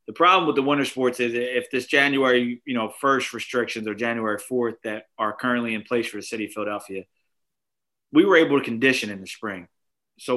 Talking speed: 210 wpm